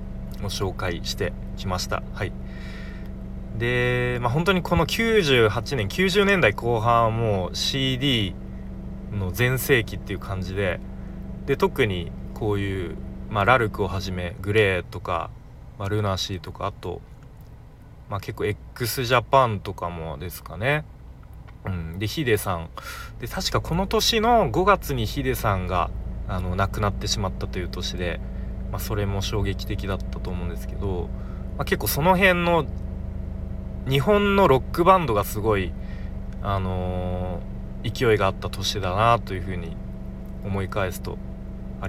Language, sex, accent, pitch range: Japanese, male, native, 90-125 Hz